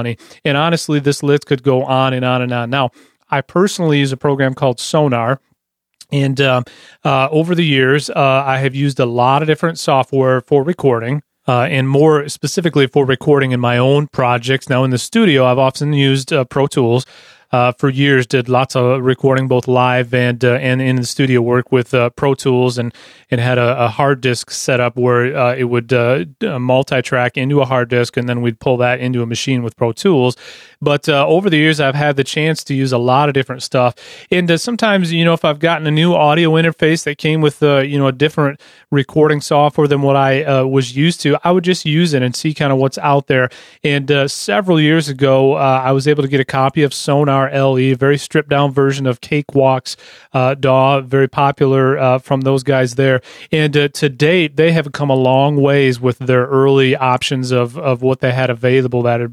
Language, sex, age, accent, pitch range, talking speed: English, male, 30-49, American, 125-145 Hz, 220 wpm